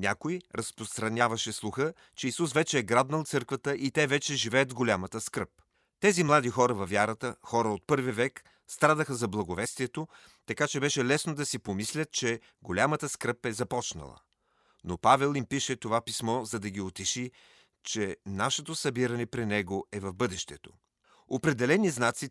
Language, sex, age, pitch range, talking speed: Bulgarian, male, 40-59, 110-140 Hz, 160 wpm